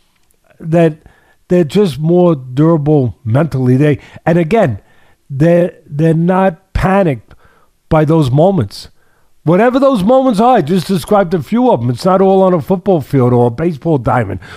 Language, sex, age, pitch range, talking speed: English, male, 50-69, 130-175 Hz, 155 wpm